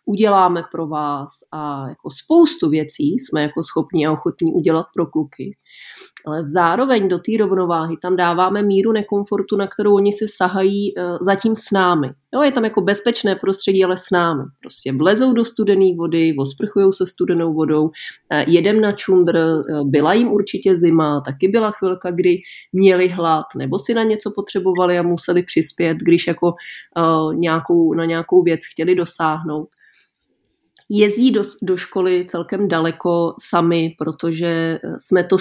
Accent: native